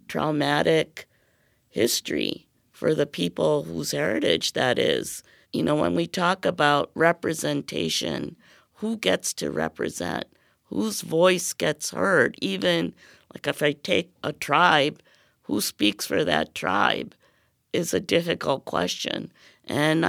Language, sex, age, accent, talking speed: English, female, 50-69, American, 120 wpm